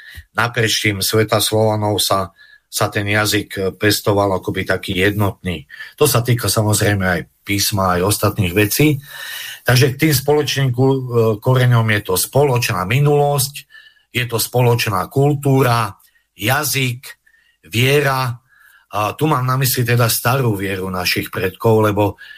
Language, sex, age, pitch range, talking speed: Slovak, male, 50-69, 100-125 Hz, 125 wpm